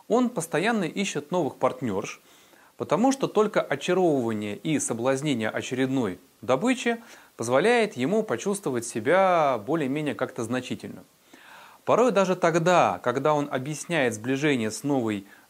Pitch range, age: 130-190 Hz, 30-49